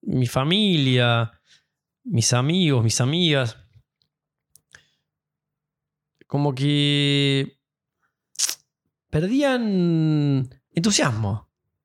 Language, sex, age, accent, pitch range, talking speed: Spanish, male, 20-39, Argentinian, 130-170 Hz, 50 wpm